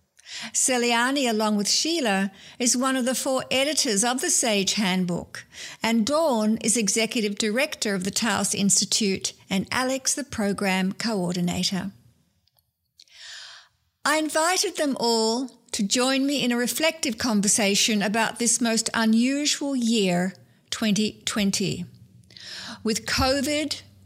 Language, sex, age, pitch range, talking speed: English, female, 60-79, 210-265 Hz, 115 wpm